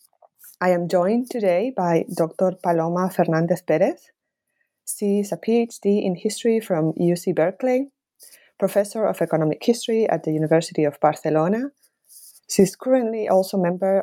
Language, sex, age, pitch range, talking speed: English, female, 20-39, 160-210 Hz, 135 wpm